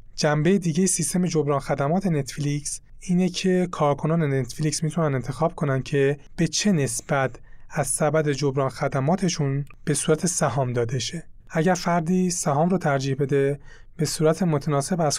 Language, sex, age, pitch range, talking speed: Persian, male, 30-49, 135-170 Hz, 140 wpm